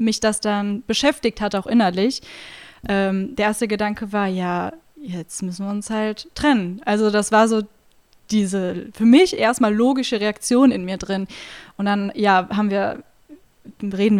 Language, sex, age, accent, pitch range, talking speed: German, female, 10-29, German, 200-245 Hz, 160 wpm